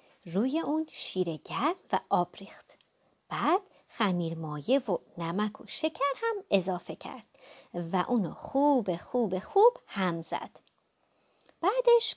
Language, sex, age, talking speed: Persian, female, 30-49, 120 wpm